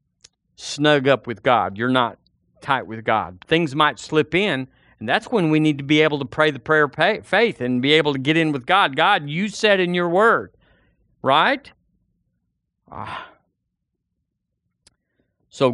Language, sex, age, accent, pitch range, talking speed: English, male, 50-69, American, 120-180 Hz, 170 wpm